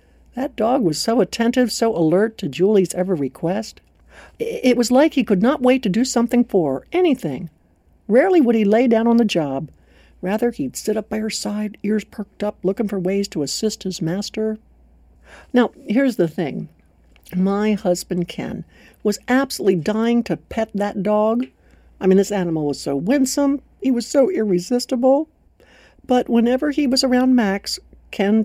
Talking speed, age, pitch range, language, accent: 170 wpm, 60-79, 185-250 Hz, English, American